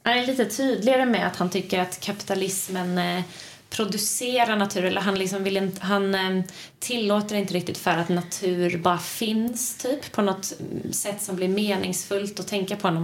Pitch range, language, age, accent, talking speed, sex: 175-205 Hz, Swedish, 30-49, native, 160 wpm, female